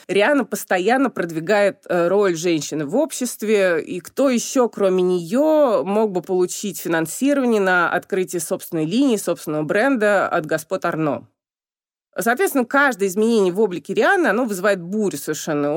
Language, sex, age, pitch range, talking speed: Russian, female, 30-49, 170-255 Hz, 130 wpm